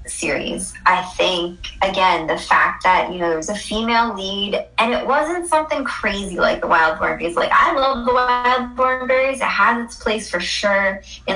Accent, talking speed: American, 190 wpm